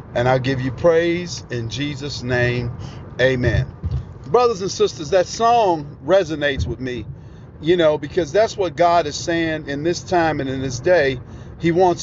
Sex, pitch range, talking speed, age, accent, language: male, 130-190 Hz, 170 wpm, 50-69, American, English